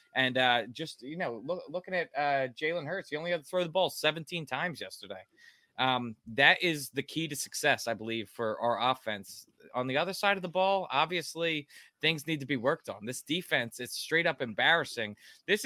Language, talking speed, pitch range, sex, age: English, 205 wpm, 125-165 Hz, male, 20-39